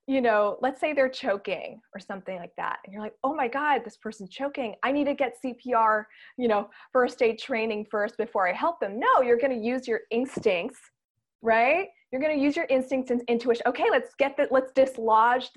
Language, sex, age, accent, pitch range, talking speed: English, female, 20-39, American, 205-270 Hz, 215 wpm